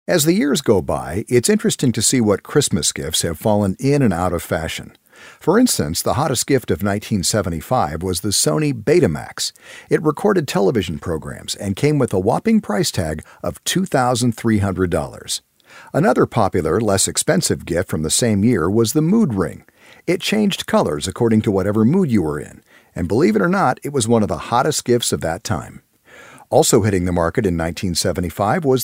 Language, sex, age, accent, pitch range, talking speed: English, male, 50-69, American, 95-145 Hz, 185 wpm